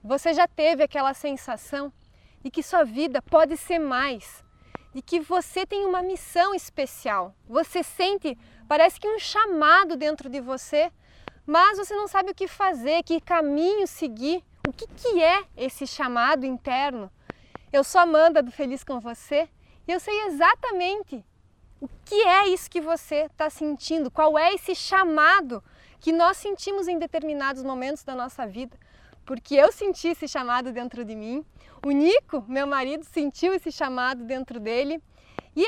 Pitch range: 275-360 Hz